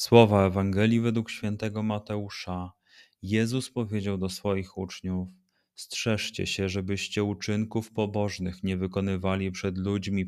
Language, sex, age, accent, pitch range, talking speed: Polish, male, 30-49, native, 95-105 Hz, 110 wpm